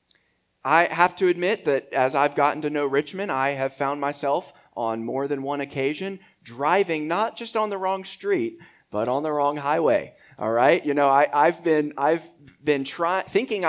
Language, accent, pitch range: English, American, 125-160 Hz